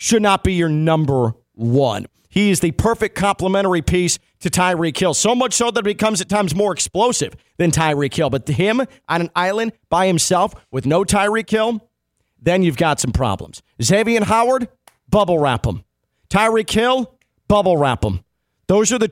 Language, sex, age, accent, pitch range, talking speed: English, male, 40-59, American, 155-215 Hz, 185 wpm